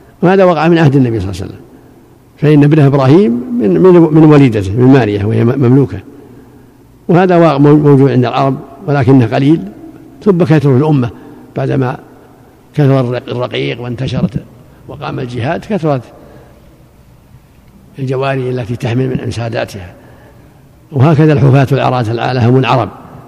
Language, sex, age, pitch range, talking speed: Arabic, male, 50-69, 125-150 Hz, 125 wpm